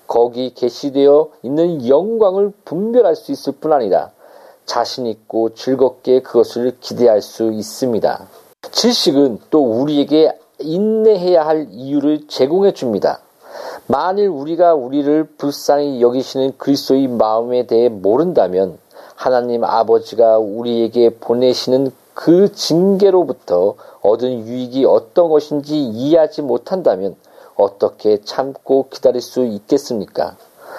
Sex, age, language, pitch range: male, 40-59, Korean, 120-175 Hz